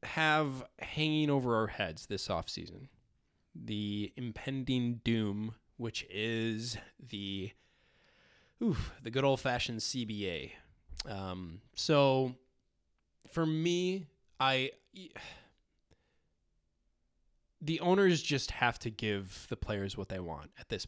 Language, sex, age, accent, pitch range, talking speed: English, male, 20-39, American, 105-135 Hz, 100 wpm